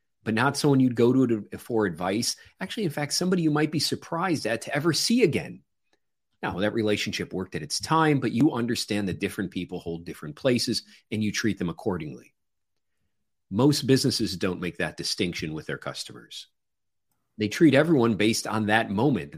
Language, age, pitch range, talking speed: English, 40-59, 105-155 Hz, 180 wpm